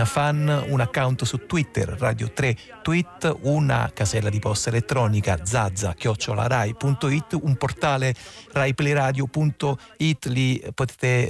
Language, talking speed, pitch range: Italian, 100 wpm, 110-135 Hz